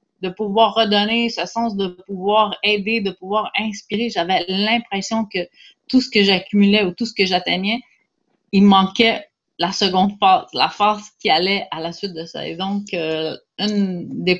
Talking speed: 175 wpm